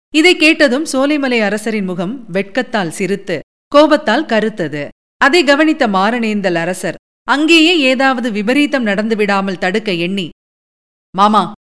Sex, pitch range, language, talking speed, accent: female, 190-215 Hz, Tamil, 105 wpm, native